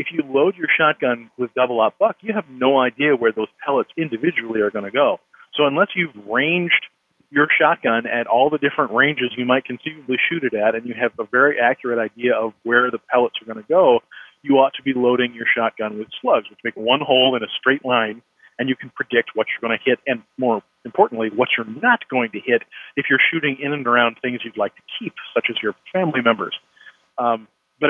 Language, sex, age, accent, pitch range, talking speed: English, male, 40-59, American, 120-150 Hz, 230 wpm